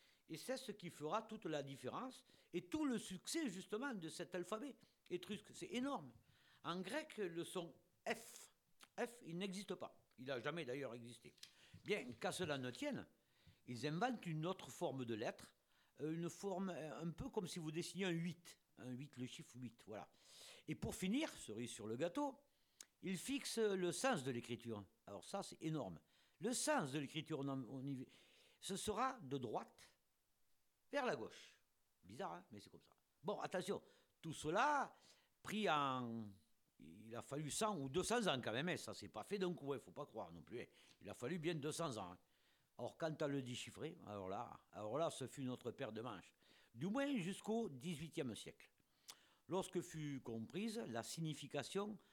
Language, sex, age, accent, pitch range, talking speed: French, male, 50-69, French, 130-195 Hz, 185 wpm